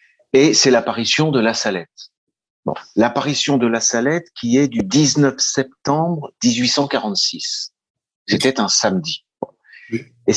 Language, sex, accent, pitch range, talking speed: French, male, French, 105-165 Hz, 120 wpm